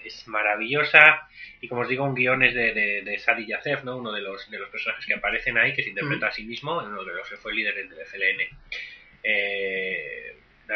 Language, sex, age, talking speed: Spanish, male, 30-49, 230 wpm